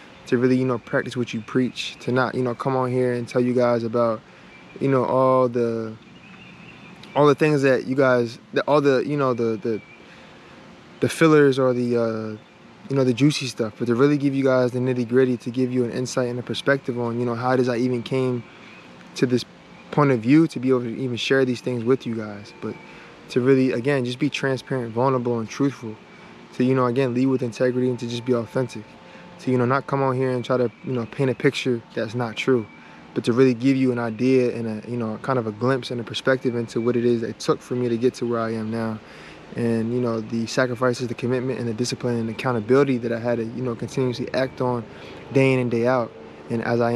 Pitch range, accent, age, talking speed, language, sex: 115-130 Hz, American, 20-39, 245 wpm, English, male